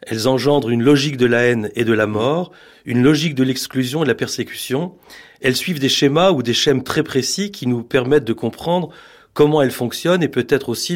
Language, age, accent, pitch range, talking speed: French, 40-59, French, 120-150 Hz, 215 wpm